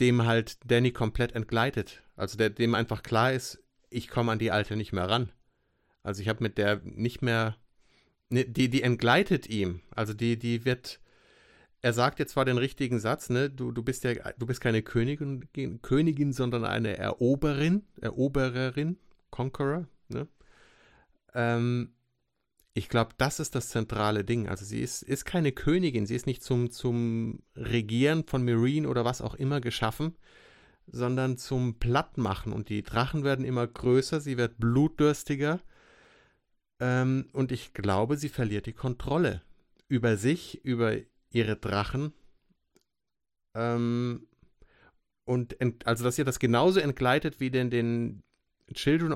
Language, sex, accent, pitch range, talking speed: German, male, German, 115-135 Hz, 150 wpm